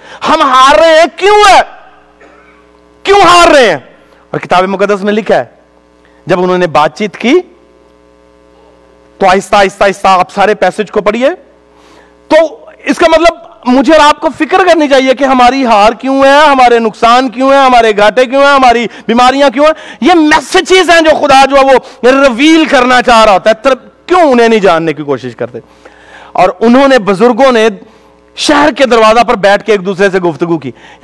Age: 40-59